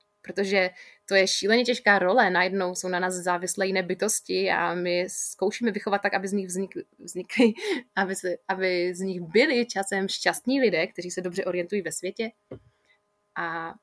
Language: Czech